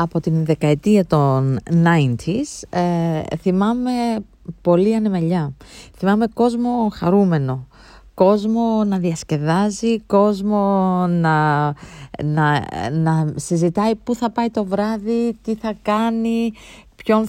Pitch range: 155-210 Hz